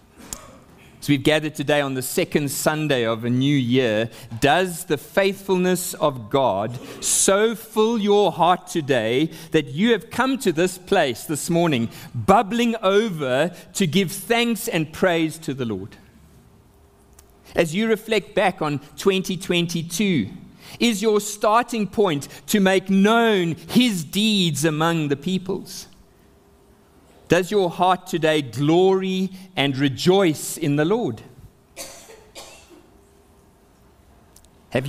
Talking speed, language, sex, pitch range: 120 wpm, English, male, 145-195 Hz